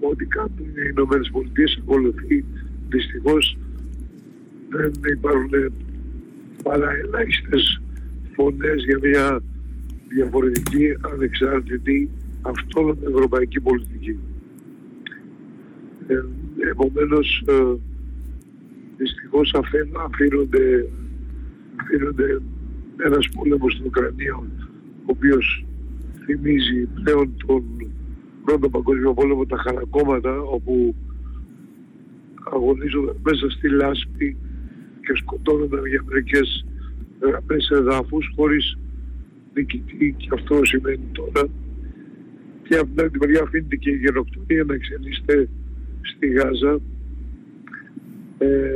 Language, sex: Greek, male